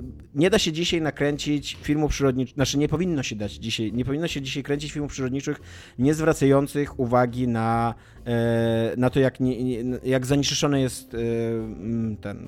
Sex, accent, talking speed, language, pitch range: male, native, 150 wpm, Polish, 120-145 Hz